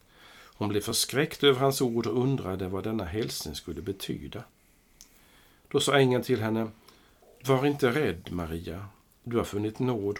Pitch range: 95-125 Hz